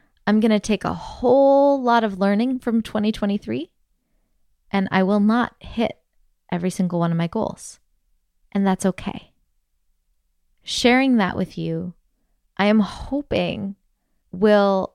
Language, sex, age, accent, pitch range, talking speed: English, female, 20-39, American, 175-220 Hz, 135 wpm